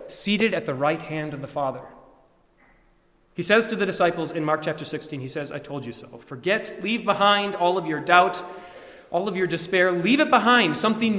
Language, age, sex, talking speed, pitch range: English, 30-49, male, 205 wpm, 135-180 Hz